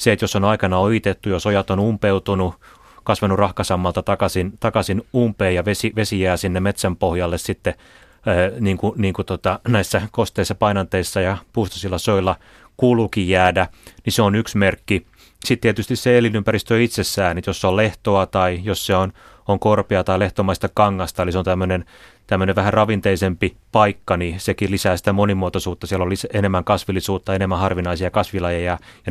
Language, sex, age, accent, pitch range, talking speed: Finnish, male, 30-49, native, 95-110 Hz, 175 wpm